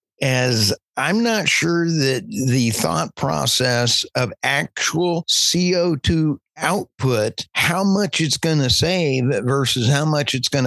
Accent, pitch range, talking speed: American, 120-145 Hz, 130 wpm